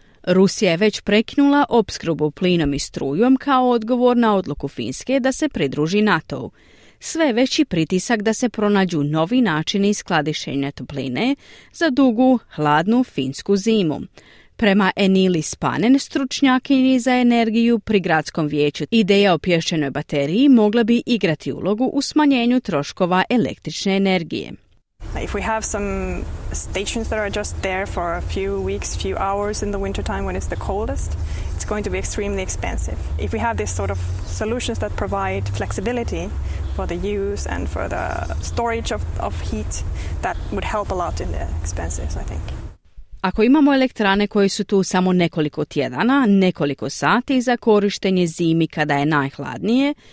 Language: Croatian